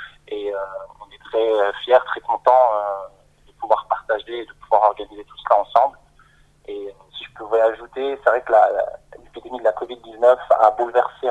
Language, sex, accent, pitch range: French, male, French, 105-125 Hz